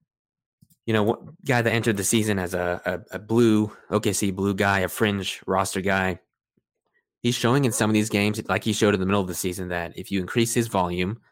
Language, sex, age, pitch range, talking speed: English, male, 20-39, 90-105 Hz, 225 wpm